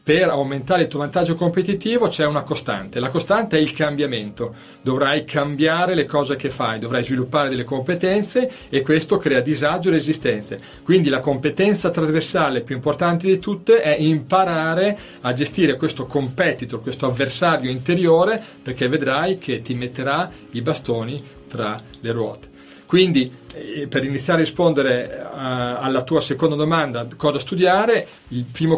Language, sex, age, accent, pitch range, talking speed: Italian, male, 40-59, native, 130-170 Hz, 145 wpm